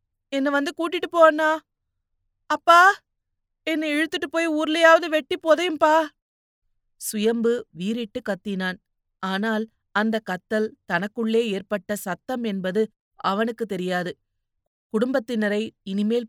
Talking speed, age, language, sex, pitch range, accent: 95 wpm, 30-49, Tamil, female, 190-235 Hz, native